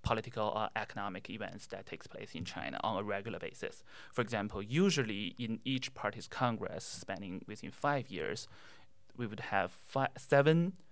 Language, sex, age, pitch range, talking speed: English, male, 30-49, 100-125 Hz, 155 wpm